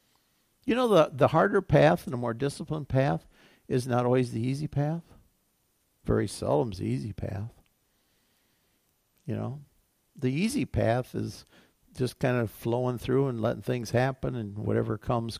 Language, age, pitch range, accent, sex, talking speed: English, 50-69, 110-140 Hz, American, male, 160 wpm